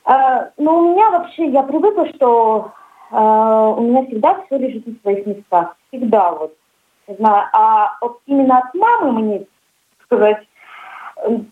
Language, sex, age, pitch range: Russian, female, 30-49, 210-295 Hz